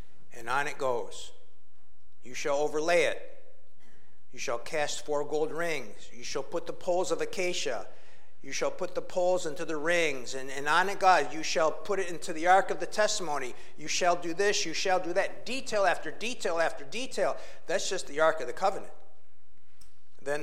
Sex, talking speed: male, 190 wpm